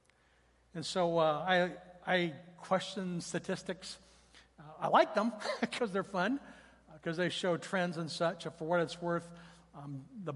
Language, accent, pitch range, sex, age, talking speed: English, American, 150-185 Hz, male, 60-79, 160 wpm